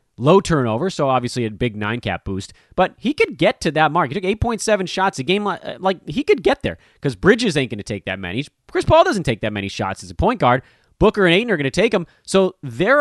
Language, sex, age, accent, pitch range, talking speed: English, male, 30-49, American, 120-185 Hz, 260 wpm